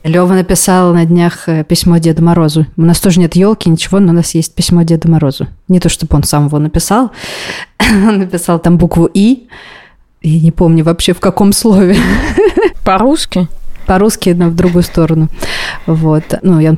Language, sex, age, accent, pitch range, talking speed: Russian, female, 20-39, native, 165-205 Hz, 165 wpm